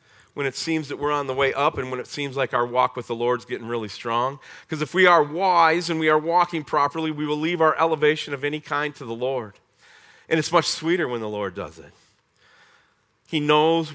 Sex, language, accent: male, English, American